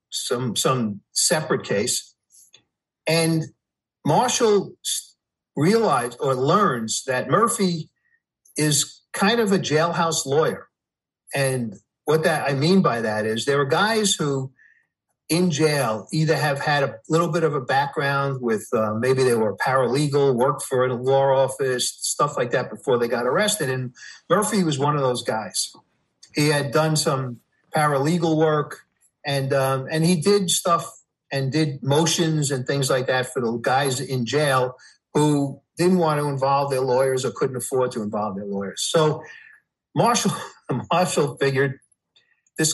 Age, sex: 50-69, male